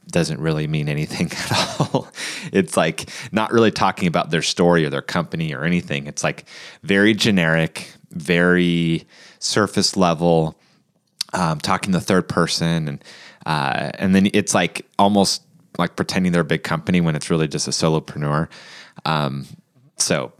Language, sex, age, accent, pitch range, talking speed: English, male, 30-49, American, 80-100 Hz, 155 wpm